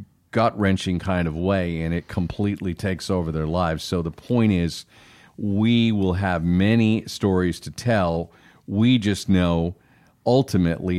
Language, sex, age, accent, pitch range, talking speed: English, male, 40-59, American, 90-115 Hz, 140 wpm